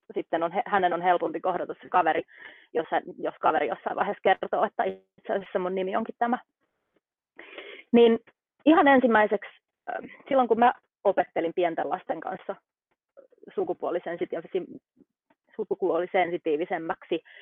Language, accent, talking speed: Finnish, native, 115 wpm